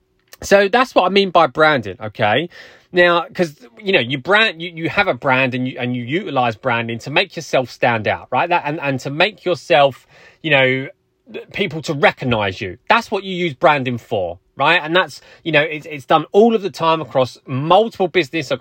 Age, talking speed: 20-39, 205 wpm